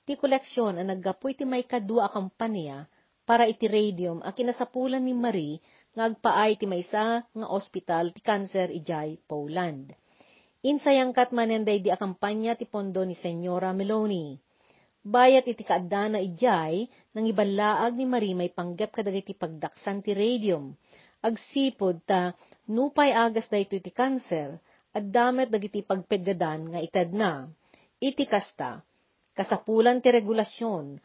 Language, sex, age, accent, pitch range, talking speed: Filipino, female, 40-59, native, 180-235 Hz, 120 wpm